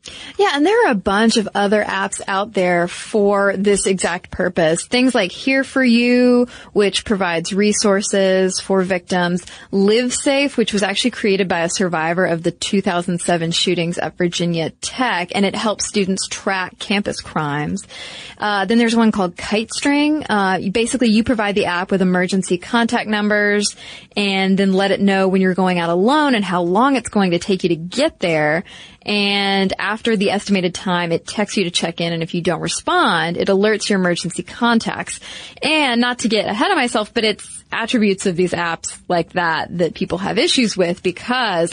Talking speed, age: 185 wpm, 20-39